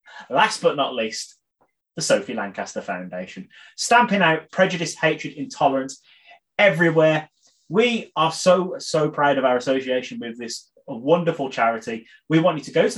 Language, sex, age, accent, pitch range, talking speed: English, male, 30-49, British, 135-225 Hz, 150 wpm